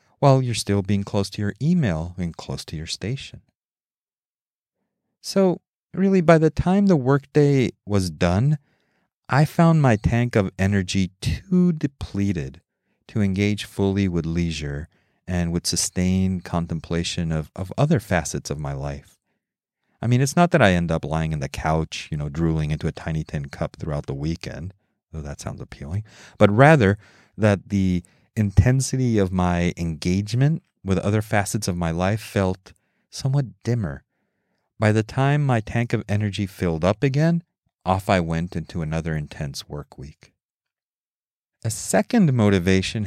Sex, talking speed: male, 155 wpm